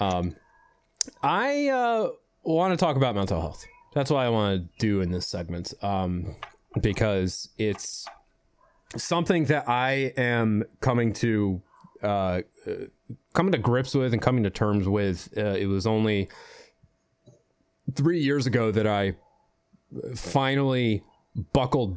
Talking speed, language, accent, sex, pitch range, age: 130 wpm, English, American, male, 95-130 Hz, 30-49